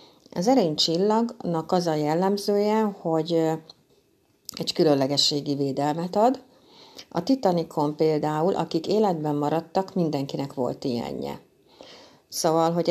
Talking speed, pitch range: 100 wpm, 145-185 Hz